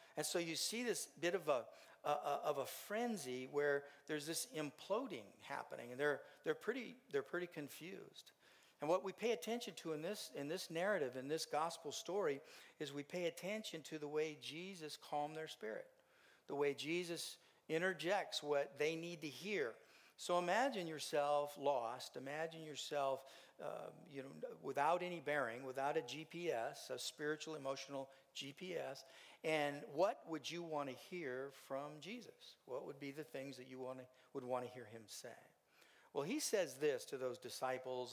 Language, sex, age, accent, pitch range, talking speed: English, male, 50-69, American, 135-175 Hz, 175 wpm